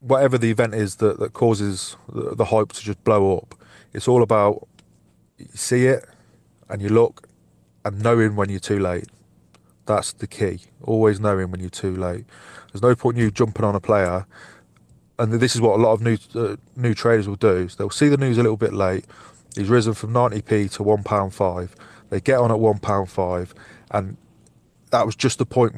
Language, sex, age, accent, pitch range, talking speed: English, male, 30-49, British, 100-120 Hz, 200 wpm